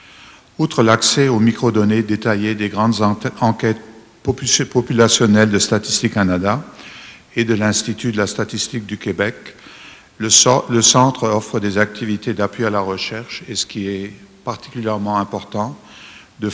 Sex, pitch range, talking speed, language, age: male, 100-115 Hz, 140 wpm, French, 50-69